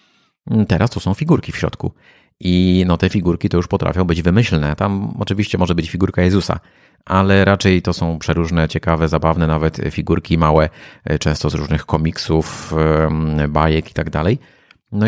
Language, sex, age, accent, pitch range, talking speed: Polish, male, 30-49, native, 80-95 Hz, 155 wpm